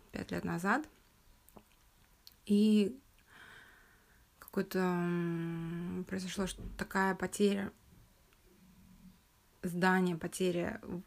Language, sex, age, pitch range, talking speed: Russian, female, 20-39, 170-200 Hz, 65 wpm